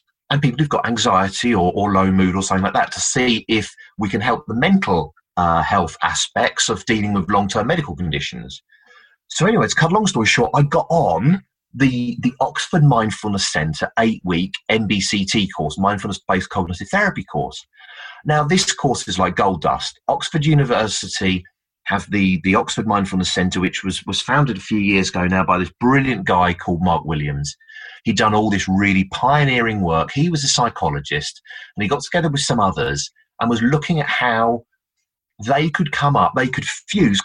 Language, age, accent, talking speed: English, 30-49, British, 185 wpm